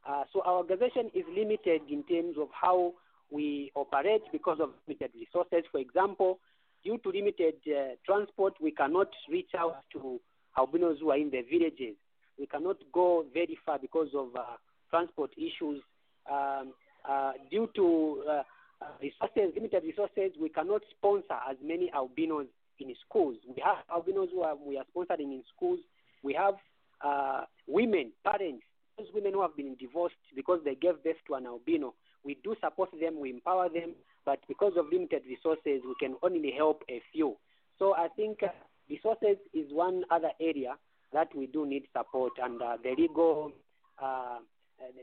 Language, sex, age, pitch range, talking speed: English, male, 40-59, 140-195 Hz, 165 wpm